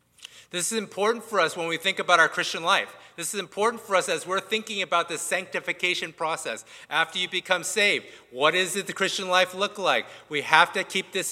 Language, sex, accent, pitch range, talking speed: English, male, American, 160-205 Hz, 210 wpm